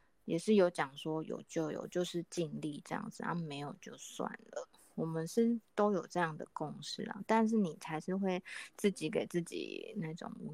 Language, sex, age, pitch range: Chinese, female, 20-39, 155-200 Hz